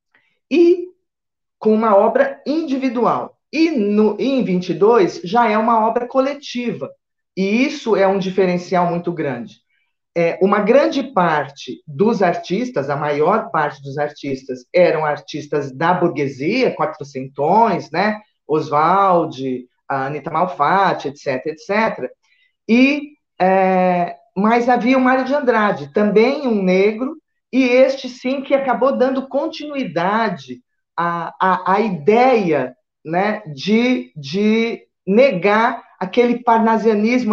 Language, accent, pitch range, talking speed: Portuguese, Brazilian, 165-235 Hz, 115 wpm